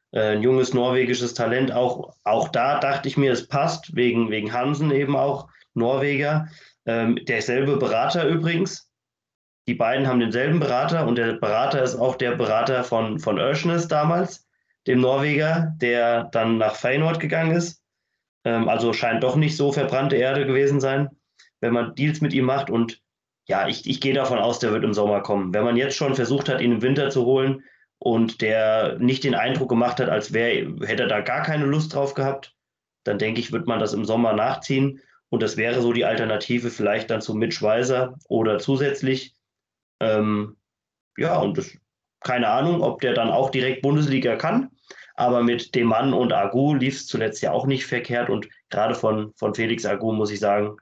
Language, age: German, 30-49